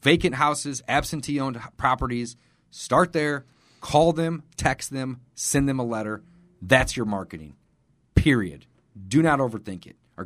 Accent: American